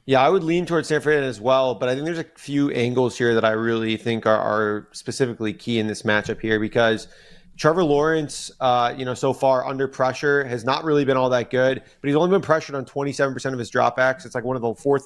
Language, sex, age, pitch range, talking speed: English, male, 30-49, 120-145 Hz, 245 wpm